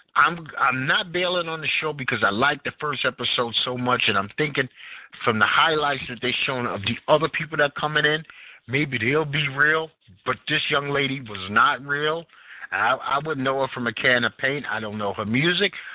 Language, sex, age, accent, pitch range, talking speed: English, male, 50-69, American, 120-155 Hz, 220 wpm